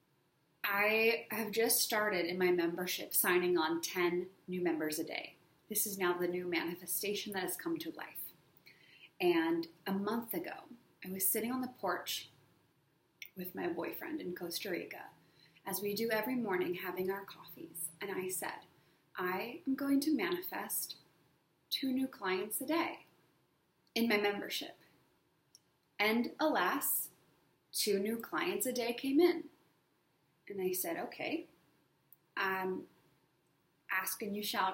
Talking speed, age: 140 wpm, 20-39